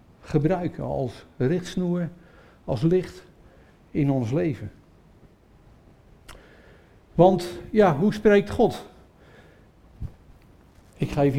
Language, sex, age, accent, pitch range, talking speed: English, male, 50-69, Dutch, 150-195 Hz, 85 wpm